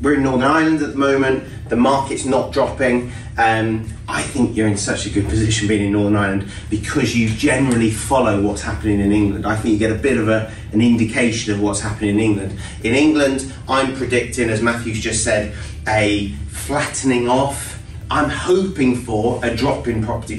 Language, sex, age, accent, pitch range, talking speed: English, male, 30-49, British, 110-140 Hz, 190 wpm